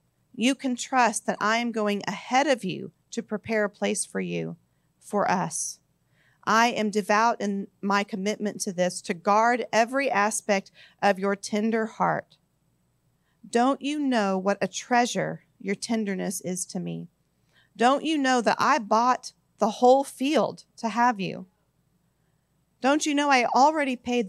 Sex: female